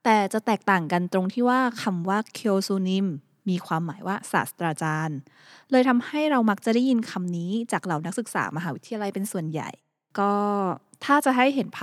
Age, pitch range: 20-39, 180-230 Hz